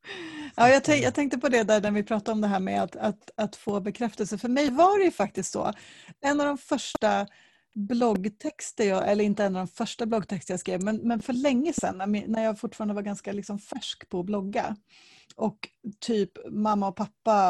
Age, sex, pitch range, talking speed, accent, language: 30-49, female, 190-225 Hz, 205 wpm, native, Swedish